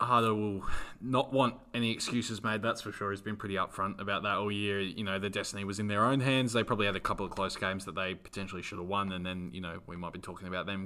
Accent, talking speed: Australian, 280 wpm